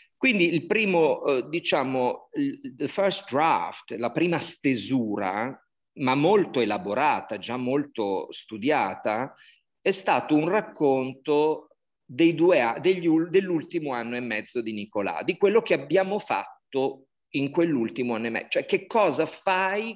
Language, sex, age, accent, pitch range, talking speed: Italian, male, 50-69, native, 125-190 Hz, 130 wpm